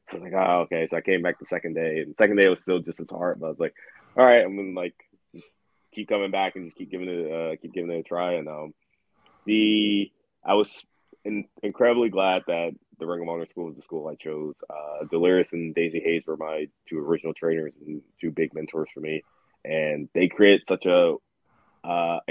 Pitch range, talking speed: 80-100 Hz, 230 wpm